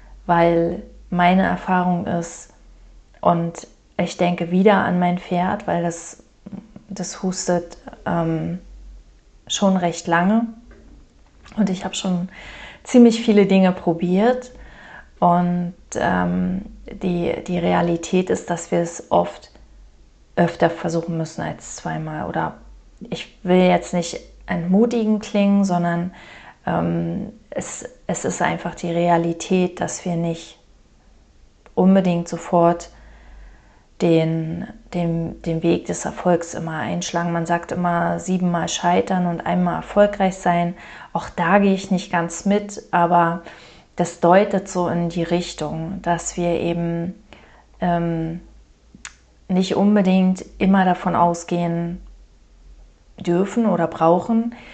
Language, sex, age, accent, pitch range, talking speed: German, female, 30-49, German, 170-185 Hz, 115 wpm